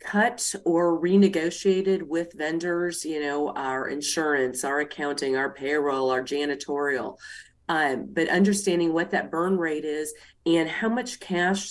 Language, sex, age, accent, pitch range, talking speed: English, female, 40-59, American, 150-185 Hz, 140 wpm